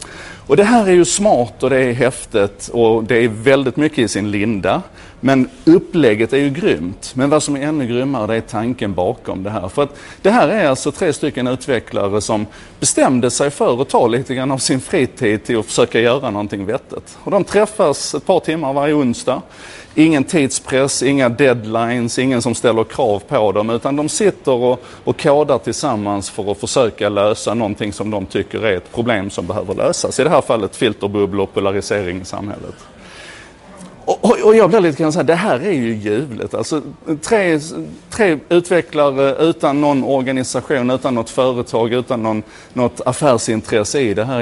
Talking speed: 185 wpm